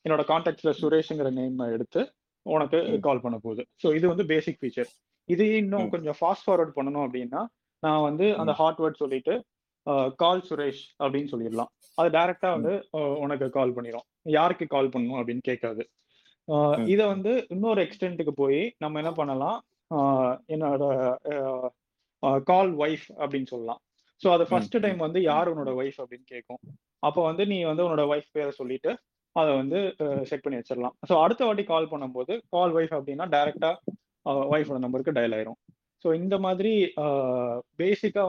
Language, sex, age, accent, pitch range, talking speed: Tamil, male, 20-39, native, 135-185 Hz, 145 wpm